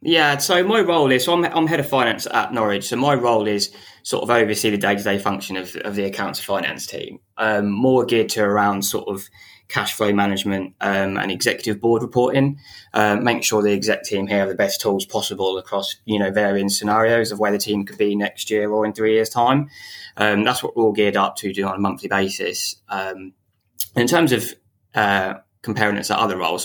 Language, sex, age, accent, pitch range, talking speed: English, male, 20-39, British, 100-115 Hz, 220 wpm